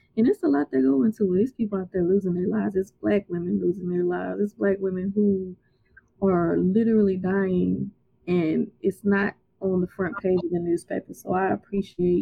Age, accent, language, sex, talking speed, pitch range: 20-39, American, English, female, 195 wpm, 180-195 Hz